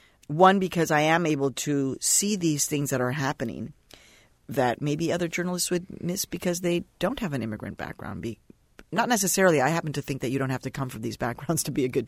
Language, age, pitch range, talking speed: English, 40-59, 120-165 Hz, 220 wpm